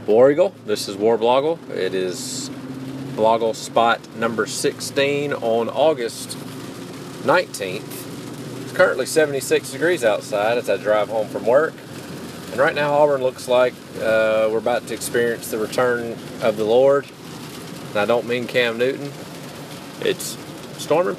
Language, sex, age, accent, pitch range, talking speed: English, male, 40-59, American, 105-135 Hz, 140 wpm